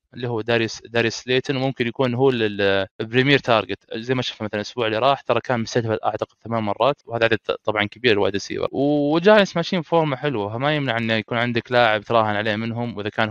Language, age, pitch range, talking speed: Arabic, 20-39, 110-130 Hz, 200 wpm